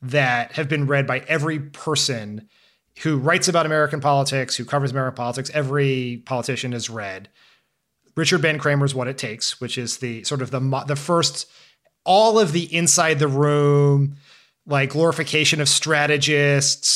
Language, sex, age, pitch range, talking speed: English, male, 30-49, 120-155 Hz, 155 wpm